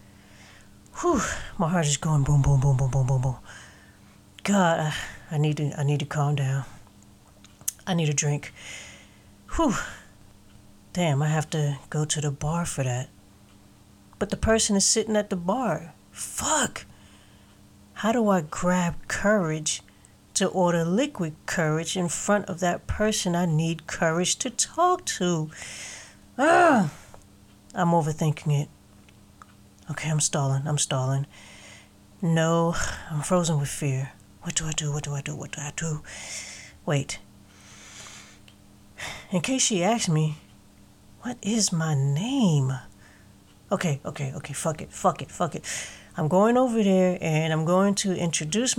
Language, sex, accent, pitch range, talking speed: English, female, American, 100-170 Hz, 150 wpm